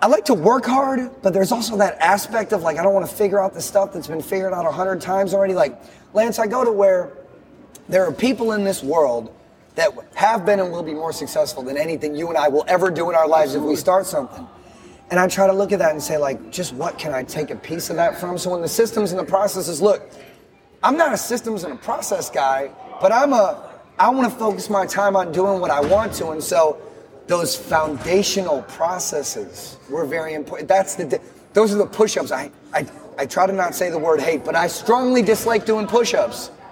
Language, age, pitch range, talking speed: English, 30-49, 155-205 Hz, 235 wpm